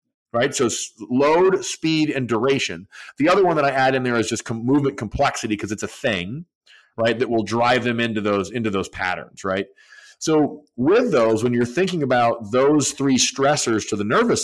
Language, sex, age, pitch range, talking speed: English, male, 40-59, 115-150 Hz, 185 wpm